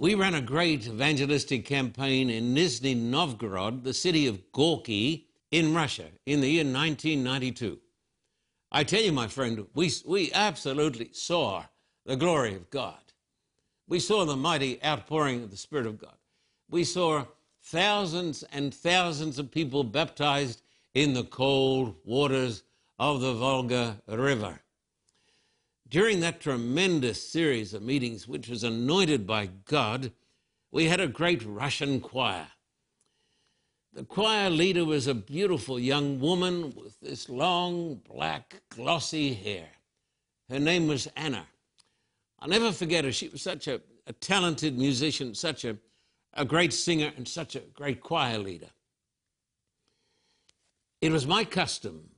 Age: 60-79